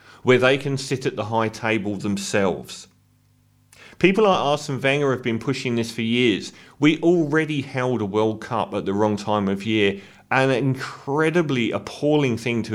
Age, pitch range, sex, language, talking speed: 40-59, 110-140 Hz, male, English, 170 wpm